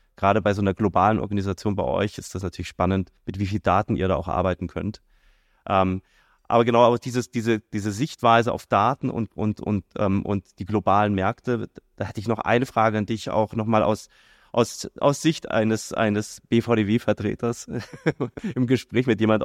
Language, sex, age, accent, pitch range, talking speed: German, male, 20-39, German, 100-115 Hz, 185 wpm